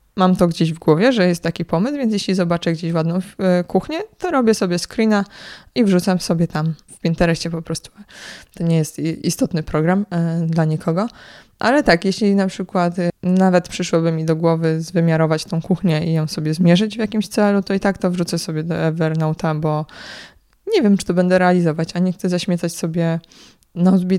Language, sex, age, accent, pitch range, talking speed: Polish, female, 20-39, native, 165-190 Hz, 185 wpm